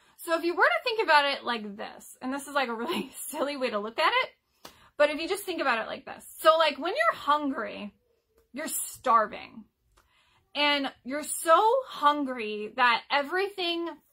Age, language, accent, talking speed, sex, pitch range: 20-39, English, American, 185 wpm, female, 235-315 Hz